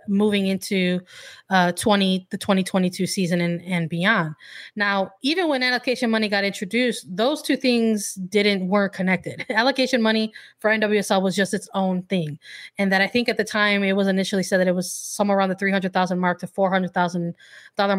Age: 20-39